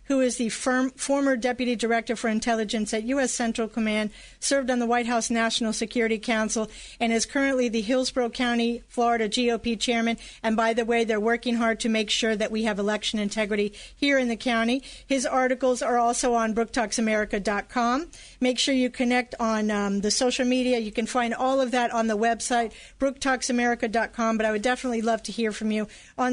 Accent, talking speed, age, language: American, 190 wpm, 40-59, English